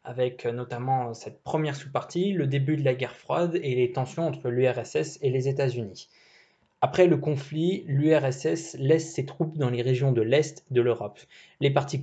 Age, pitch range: 20-39, 120-150 Hz